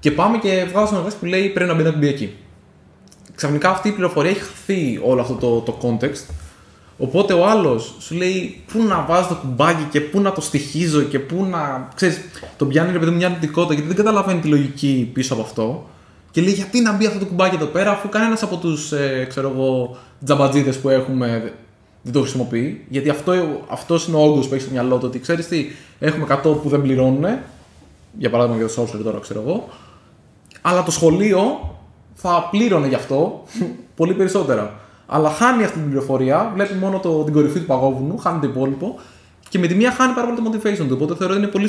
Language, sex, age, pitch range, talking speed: Greek, male, 20-39, 130-180 Hz, 205 wpm